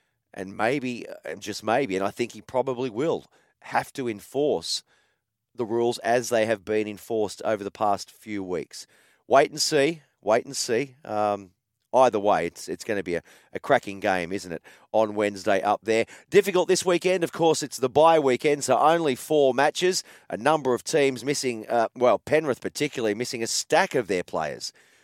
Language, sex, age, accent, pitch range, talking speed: English, male, 30-49, Australian, 105-150 Hz, 185 wpm